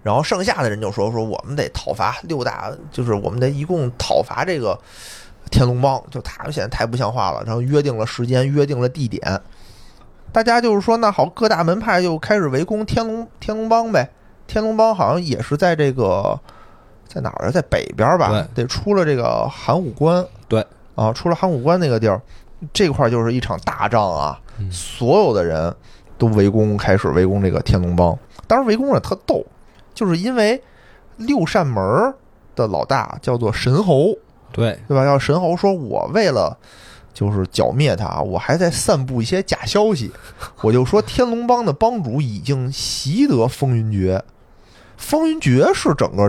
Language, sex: Chinese, male